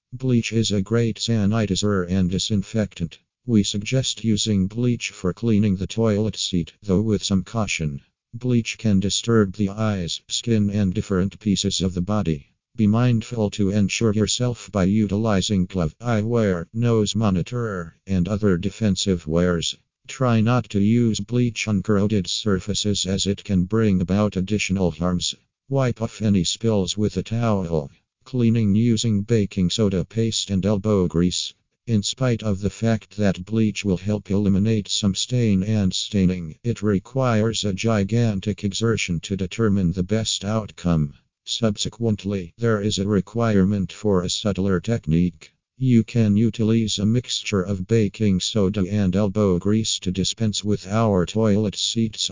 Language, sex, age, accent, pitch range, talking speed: English, male, 50-69, American, 95-110 Hz, 145 wpm